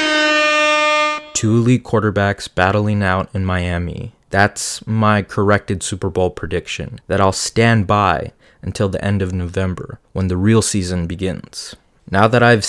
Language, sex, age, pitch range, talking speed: English, male, 20-39, 95-110 Hz, 140 wpm